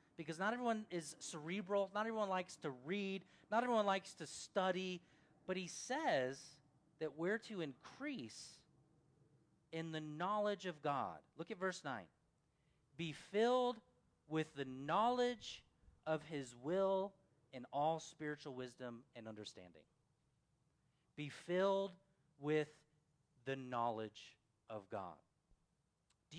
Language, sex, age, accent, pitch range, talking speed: English, male, 40-59, American, 140-195 Hz, 120 wpm